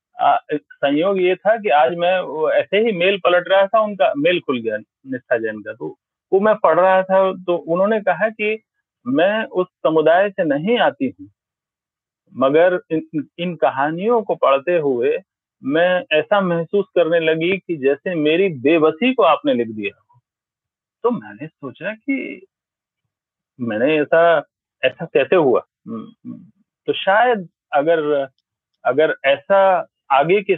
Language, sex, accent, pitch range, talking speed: Hindi, male, native, 150-210 Hz, 135 wpm